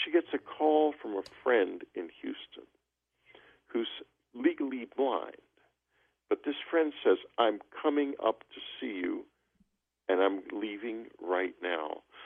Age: 50-69